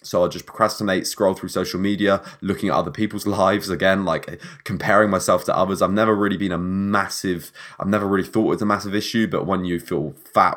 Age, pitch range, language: 20-39, 85-100 Hz, English